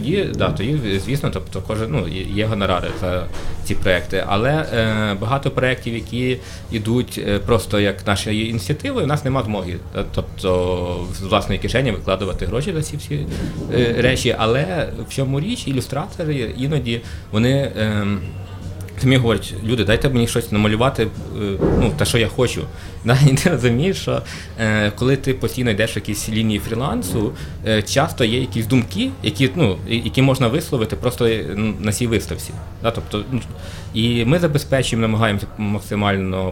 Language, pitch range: Ukrainian, 95-125 Hz